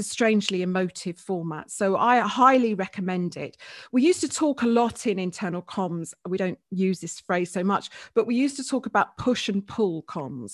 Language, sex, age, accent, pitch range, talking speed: English, female, 40-59, British, 185-225 Hz, 200 wpm